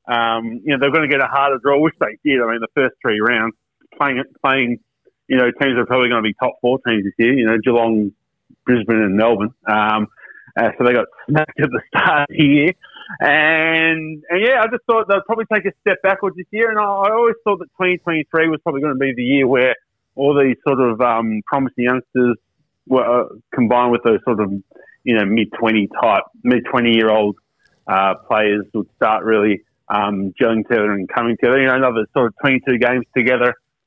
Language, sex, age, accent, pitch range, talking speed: English, male, 30-49, Australian, 120-160 Hz, 215 wpm